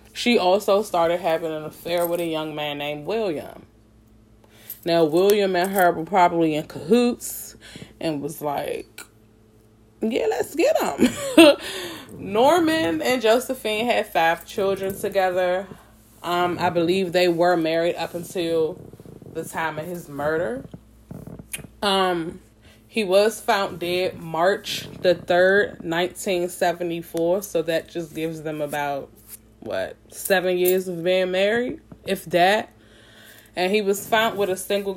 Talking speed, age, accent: 130 wpm, 20-39, American